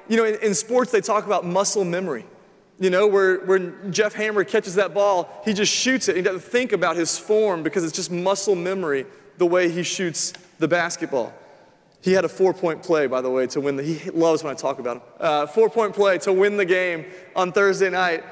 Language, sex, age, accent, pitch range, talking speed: English, male, 30-49, American, 175-225 Hz, 225 wpm